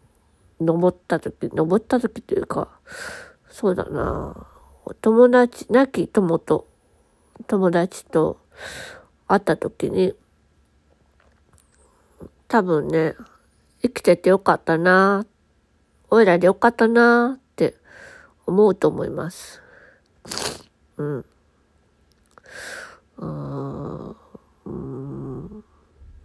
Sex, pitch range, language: female, 150-230 Hz, Japanese